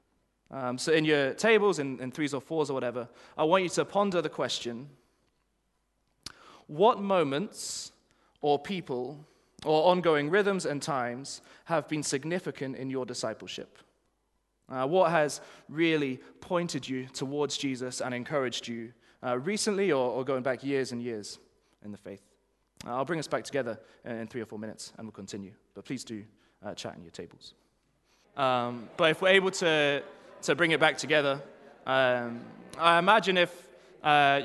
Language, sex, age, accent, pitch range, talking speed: English, male, 20-39, British, 130-165 Hz, 165 wpm